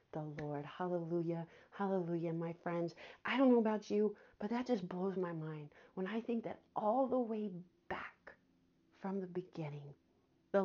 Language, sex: English, female